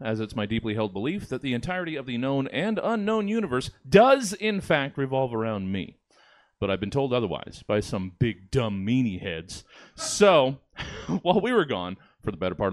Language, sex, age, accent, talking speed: English, male, 30-49, American, 195 wpm